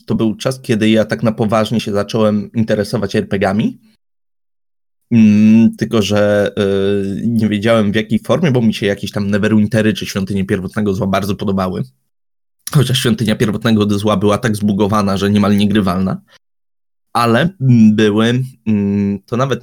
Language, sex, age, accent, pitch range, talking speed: Polish, male, 20-39, native, 105-145 Hz, 140 wpm